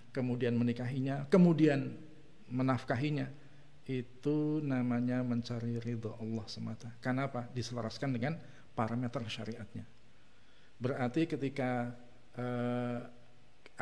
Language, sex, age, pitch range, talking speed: Indonesian, male, 50-69, 115-135 Hz, 80 wpm